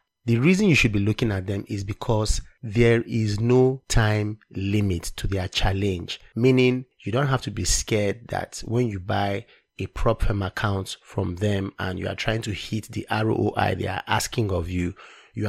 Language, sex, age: English, male, 30-49